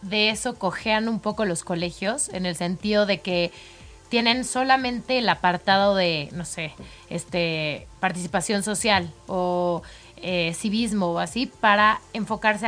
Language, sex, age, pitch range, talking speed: Spanish, female, 30-49, 185-230 Hz, 135 wpm